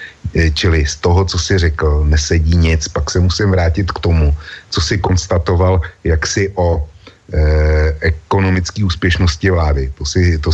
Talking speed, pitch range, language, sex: 140 wpm, 80-95 Hz, Slovak, male